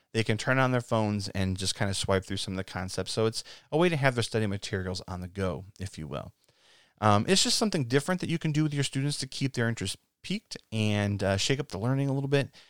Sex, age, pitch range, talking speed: male, 30-49, 100-130 Hz, 270 wpm